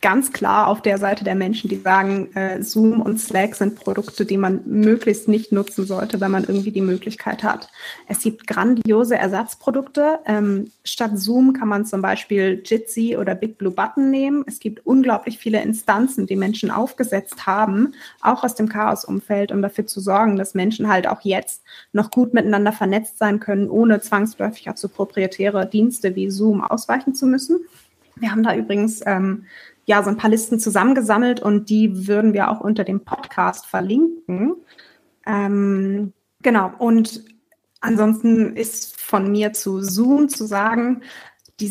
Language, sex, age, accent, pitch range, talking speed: German, female, 20-39, German, 200-230 Hz, 165 wpm